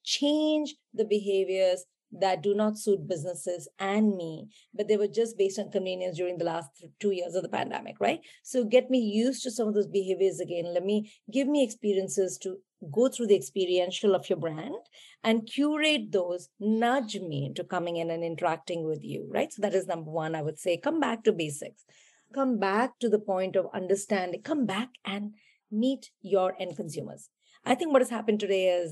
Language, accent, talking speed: English, Indian, 195 wpm